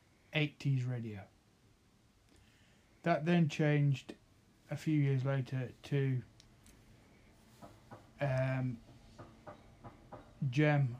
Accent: British